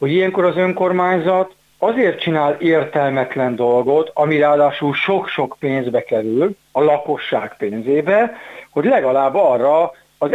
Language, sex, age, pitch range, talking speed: Hungarian, male, 60-79, 125-165 Hz, 115 wpm